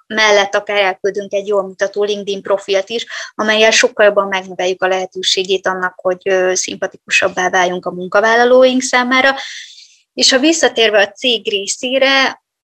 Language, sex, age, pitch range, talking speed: Hungarian, female, 20-39, 195-220 Hz, 135 wpm